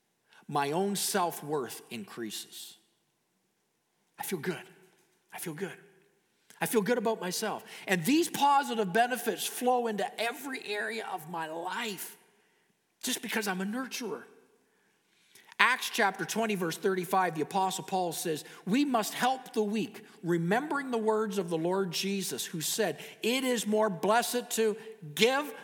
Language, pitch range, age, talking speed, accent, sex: English, 175-235 Hz, 50-69, 140 wpm, American, male